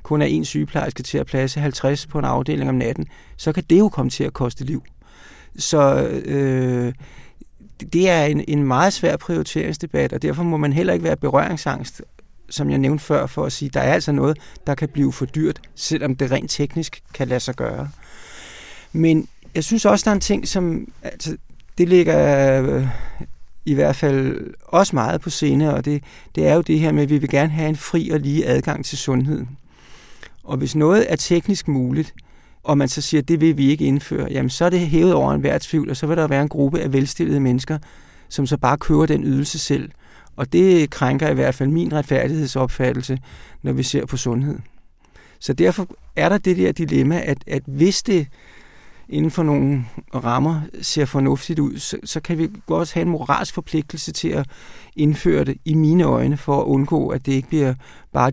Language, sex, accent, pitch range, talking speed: Danish, male, native, 135-160 Hz, 205 wpm